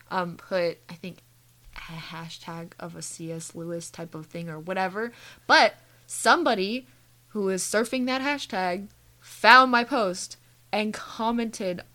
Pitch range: 175-235 Hz